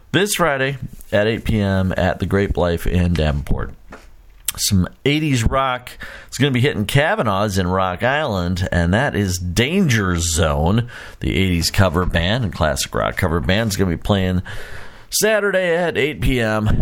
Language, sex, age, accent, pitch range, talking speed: English, male, 40-59, American, 85-115 Hz, 165 wpm